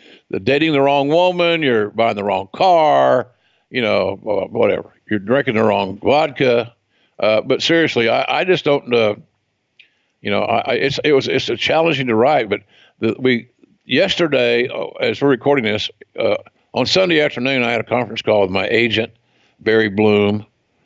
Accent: American